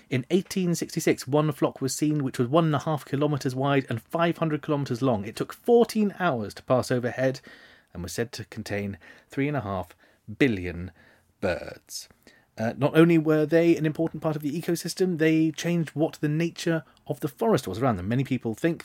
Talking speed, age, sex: 195 wpm, 30-49, male